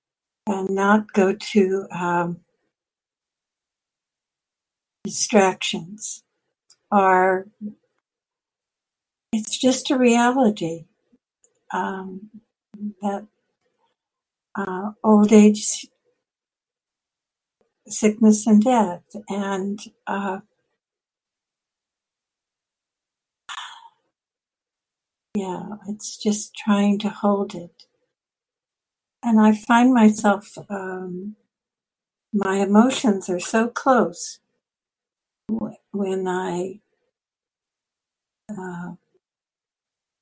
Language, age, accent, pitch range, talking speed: English, 60-79, American, 190-220 Hz, 60 wpm